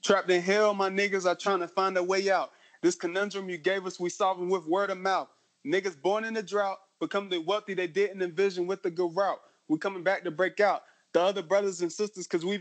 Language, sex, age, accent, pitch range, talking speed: English, male, 20-39, American, 160-205 Hz, 245 wpm